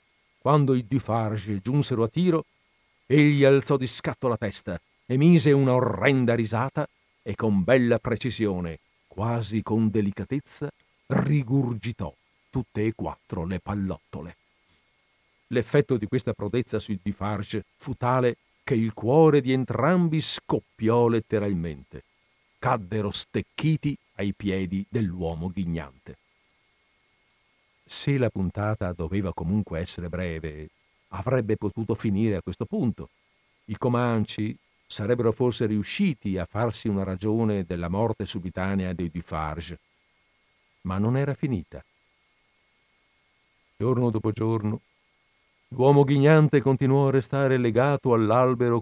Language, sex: Italian, male